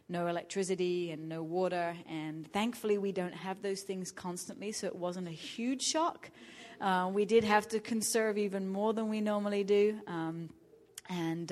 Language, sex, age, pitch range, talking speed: English, female, 30-49, 170-195 Hz, 170 wpm